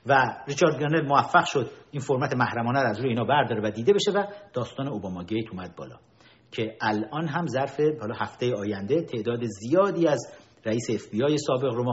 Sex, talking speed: male, 195 wpm